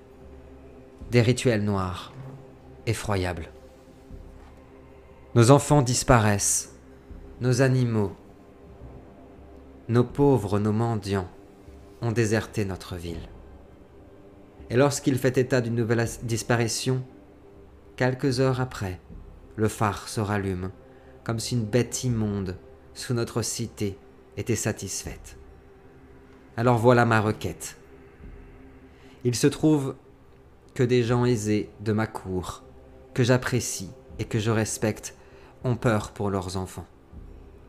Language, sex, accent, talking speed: French, male, French, 105 wpm